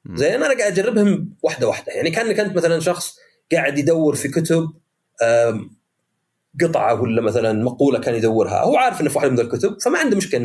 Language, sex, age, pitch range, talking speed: Arabic, male, 30-49, 140-195 Hz, 180 wpm